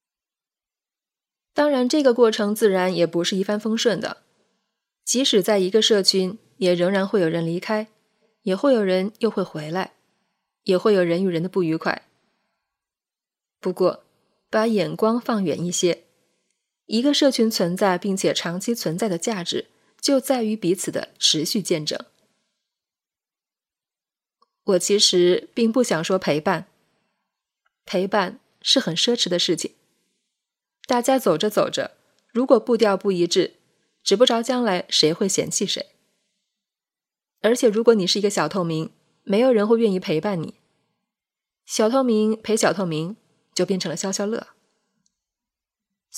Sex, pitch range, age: female, 185-230 Hz, 20-39